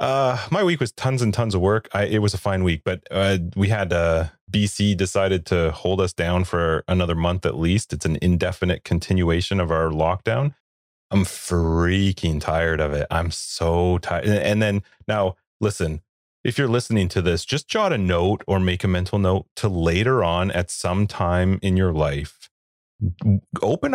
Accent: American